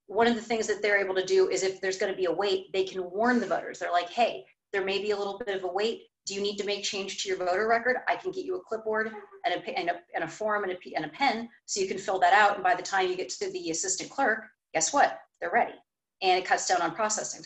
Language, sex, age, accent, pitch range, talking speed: English, female, 30-49, American, 190-240 Hz, 290 wpm